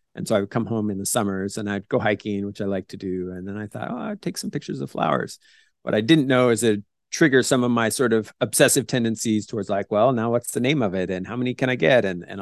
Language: English